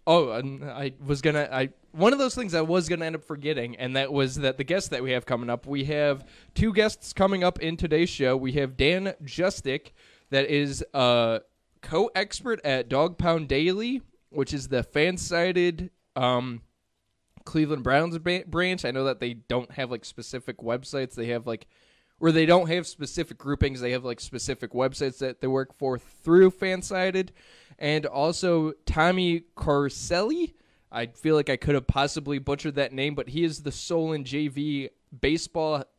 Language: English